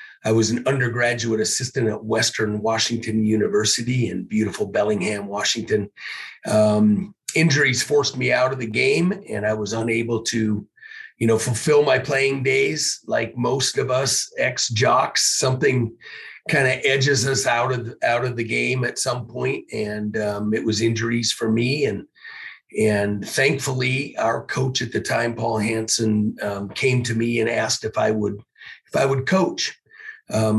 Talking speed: 160 wpm